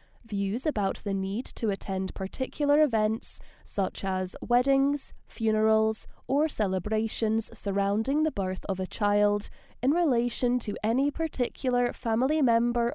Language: English